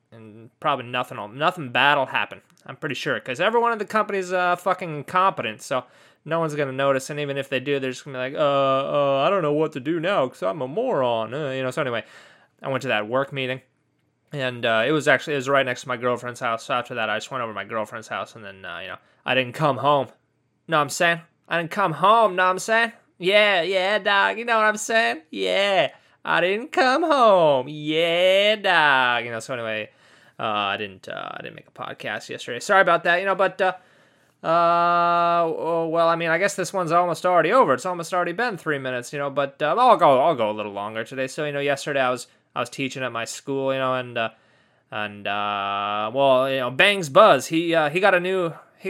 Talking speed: 245 wpm